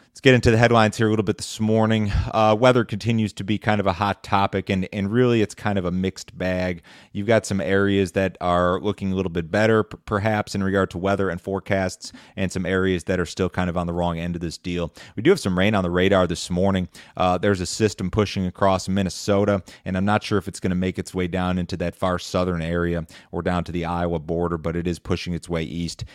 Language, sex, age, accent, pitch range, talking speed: English, male, 30-49, American, 90-105 Hz, 255 wpm